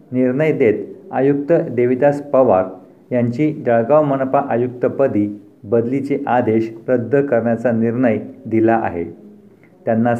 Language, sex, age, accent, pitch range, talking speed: Marathi, male, 50-69, native, 120-140 Hz, 100 wpm